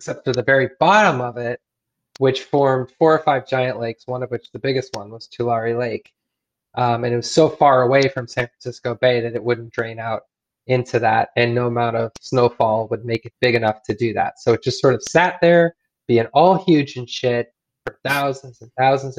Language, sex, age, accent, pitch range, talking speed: English, male, 20-39, American, 120-140 Hz, 220 wpm